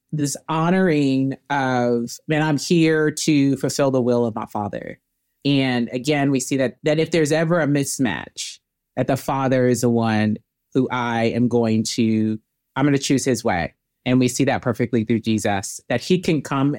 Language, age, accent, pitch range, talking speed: English, 30-49, American, 125-160 Hz, 185 wpm